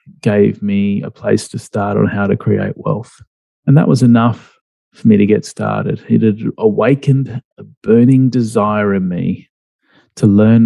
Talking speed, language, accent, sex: 170 wpm, English, Australian, male